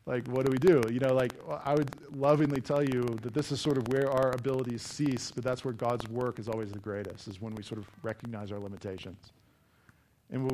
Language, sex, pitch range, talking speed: English, male, 120-150 Hz, 235 wpm